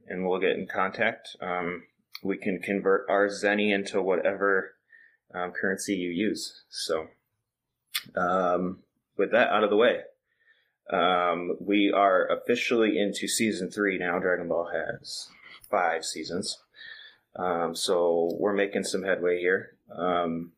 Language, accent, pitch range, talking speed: English, American, 90-115 Hz, 135 wpm